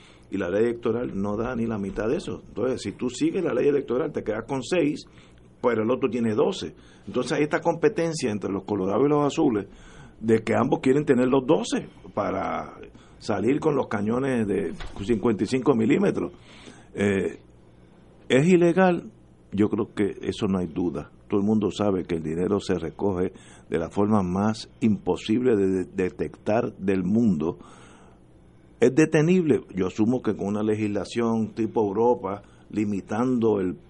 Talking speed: 165 wpm